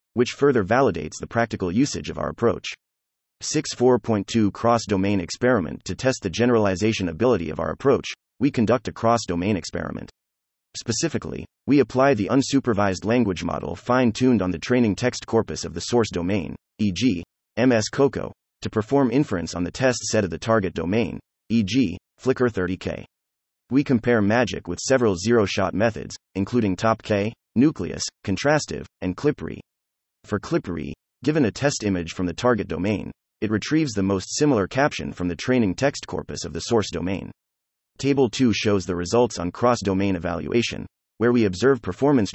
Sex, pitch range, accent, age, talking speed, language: male, 90-125 Hz, American, 30-49, 155 wpm, English